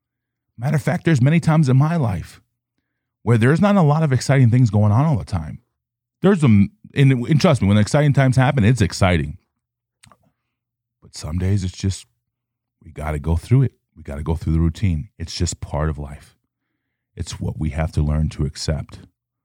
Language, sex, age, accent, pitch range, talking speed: English, male, 30-49, American, 95-125 Hz, 200 wpm